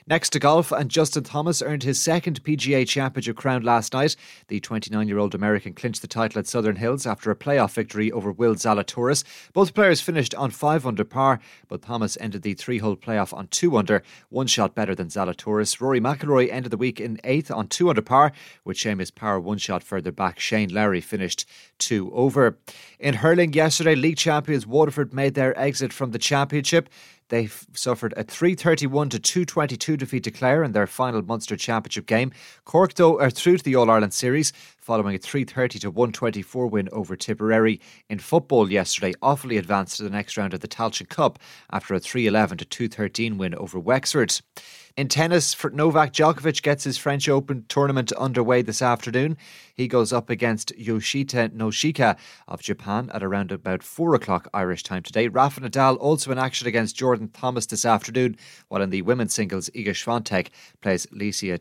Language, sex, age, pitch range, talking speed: English, male, 30-49, 110-140 Hz, 175 wpm